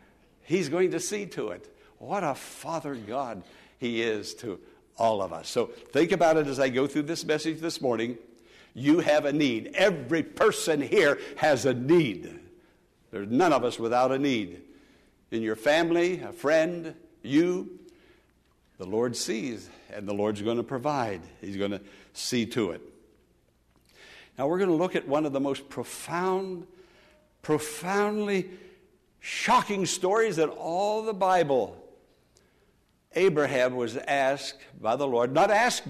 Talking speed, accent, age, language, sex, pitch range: 155 wpm, American, 60-79, English, male, 120-165 Hz